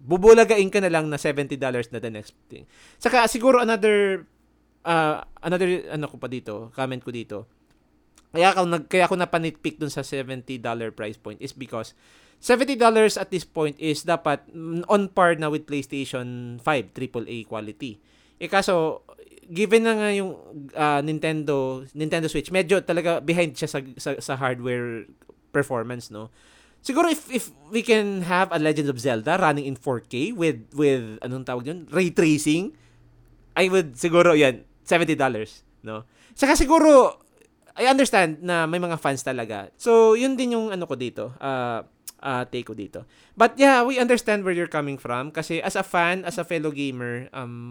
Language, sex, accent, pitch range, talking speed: Filipino, male, native, 130-190 Hz, 165 wpm